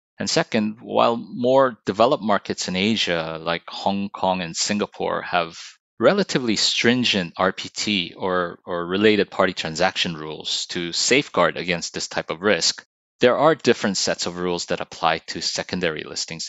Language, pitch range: English, 85-100 Hz